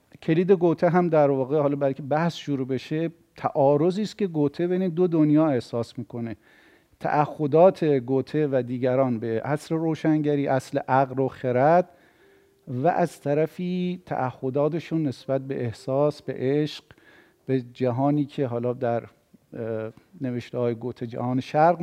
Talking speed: 130 wpm